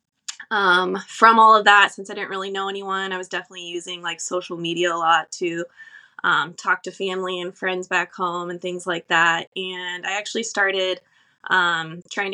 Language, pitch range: English, 175-195 Hz